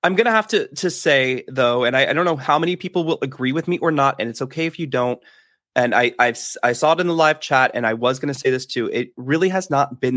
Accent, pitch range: American, 130-185 Hz